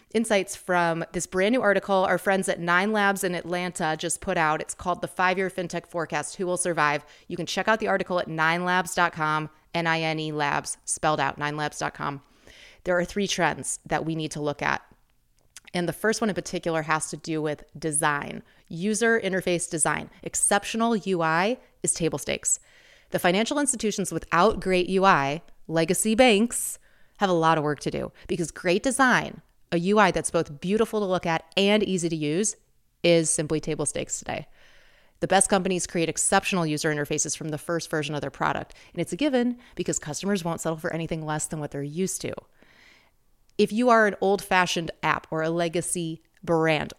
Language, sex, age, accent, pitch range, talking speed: English, female, 30-49, American, 155-190 Hz, 185 wpm